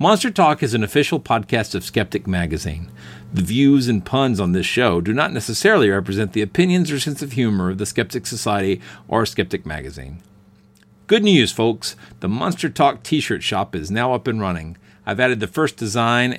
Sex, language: male, English